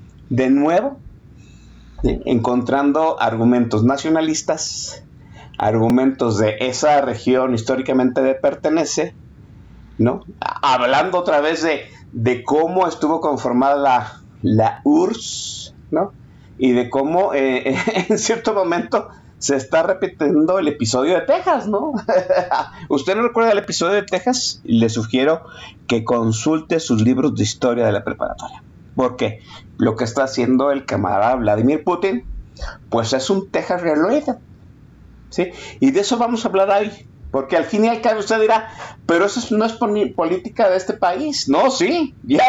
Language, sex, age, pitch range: Spanish, male, 50-69, 130-210 Hz